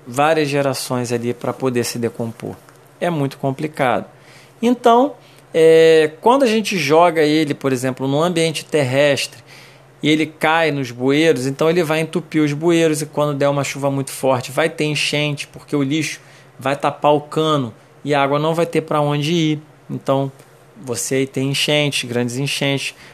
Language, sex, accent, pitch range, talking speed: Portuguese, male, Brazilian, 140-170 Hz, 170 wpm